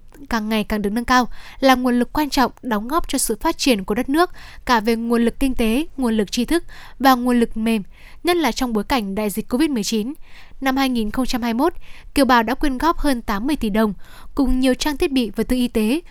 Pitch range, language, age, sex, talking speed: 225-270 Hz, Vietnamese, 10-29, female, 230 wpm